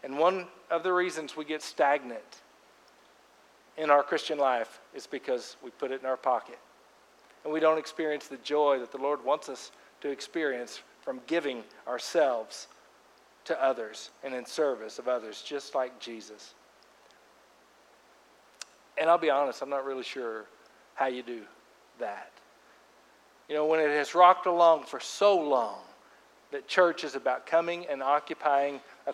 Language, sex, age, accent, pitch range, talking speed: English, male, 50-69, American, 135-175 Hz, 155 wpm